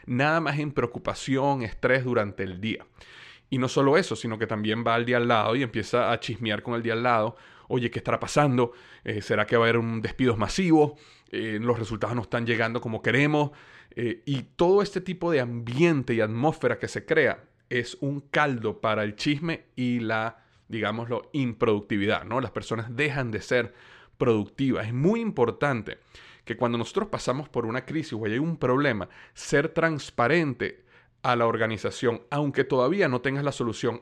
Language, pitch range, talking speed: Spanish, 115-145 Hz, 180 wpm